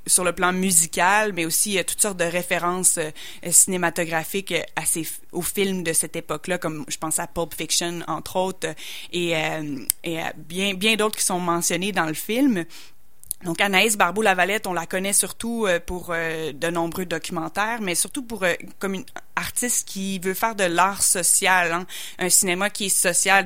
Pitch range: 165-195 Hz